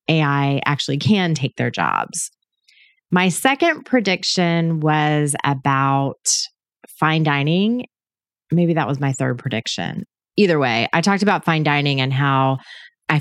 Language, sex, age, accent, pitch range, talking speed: English, female, 30-49, American, 135-175 Hz, 130 wpm